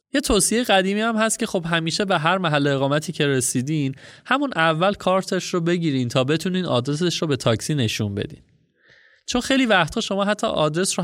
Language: Persian